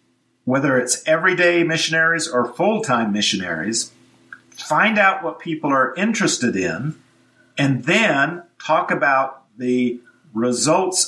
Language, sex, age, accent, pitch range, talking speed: English, male, 50-69, American, 120-165 Hz, 110 wpm